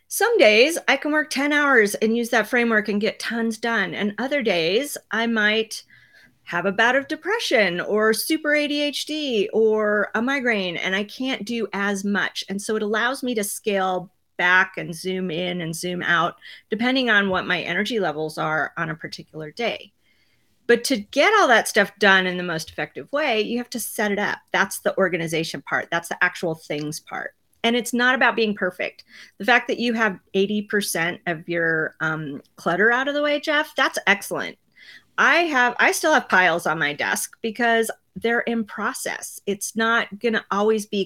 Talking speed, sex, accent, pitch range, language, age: 190 wpm, female, American, 185-240 Hz, English, 40-59